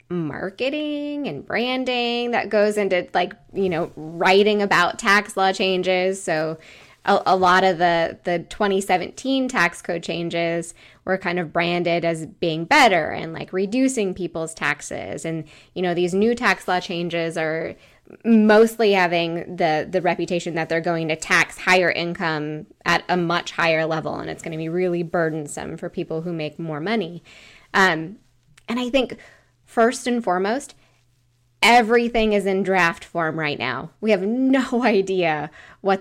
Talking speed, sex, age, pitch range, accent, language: 160 wpm, female, 20-39, 160-195 Hz, American, English